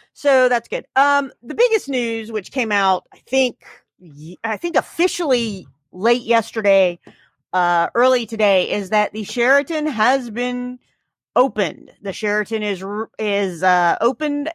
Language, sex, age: English, female, 40-59